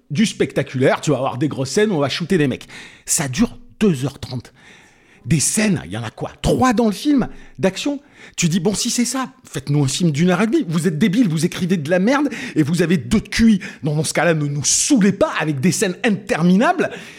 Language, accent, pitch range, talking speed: French, French, 140-210 Hz, 230 wpm